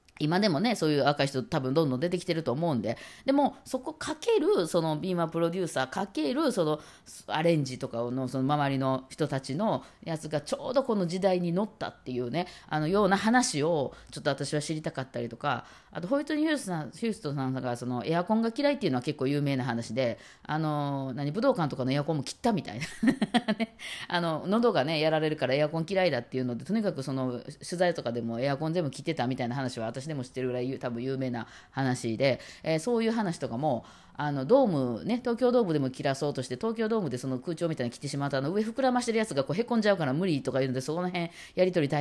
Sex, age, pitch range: female, 20-39, 130-190 Hz